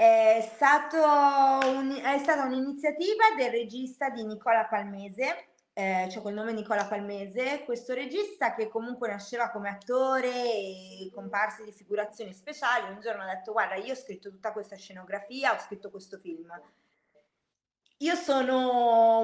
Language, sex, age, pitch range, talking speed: Italian, female, 20-39, 215-285 Hz, 145 wpm